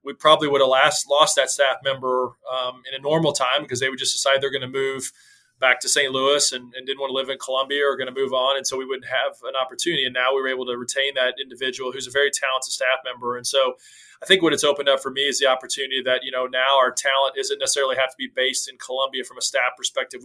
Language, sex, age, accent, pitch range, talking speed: English, male, 20-39, American, 130-145 Hz, 275 wpm